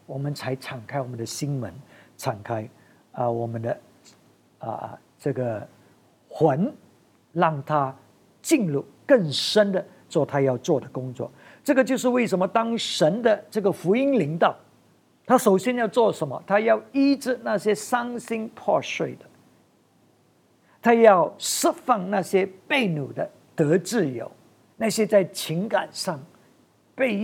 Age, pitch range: 50-69, 140-215 Hz